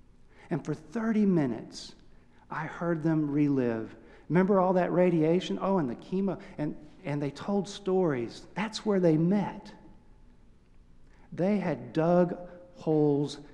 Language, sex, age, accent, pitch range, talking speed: English, male, 50-69, American, 115-170 Hz, 130 wpm